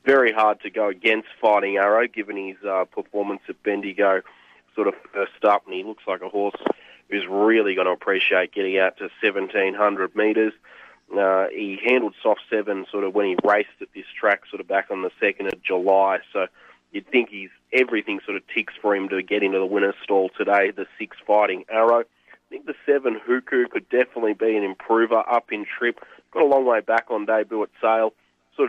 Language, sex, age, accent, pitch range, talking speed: English, male, 30-49, Australian, 100-110 Hz, 205 wpm